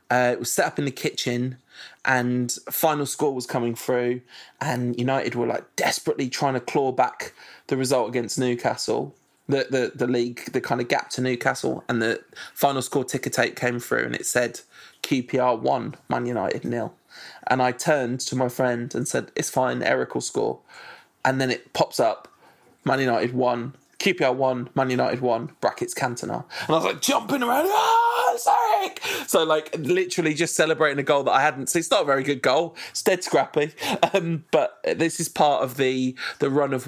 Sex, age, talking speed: male, 20-39, 195 wpm